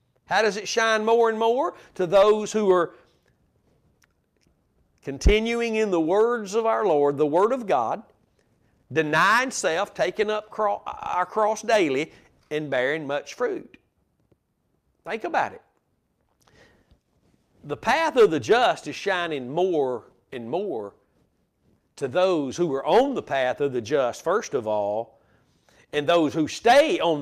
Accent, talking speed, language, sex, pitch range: American, 140 wpm, English, male, 140-185 Hz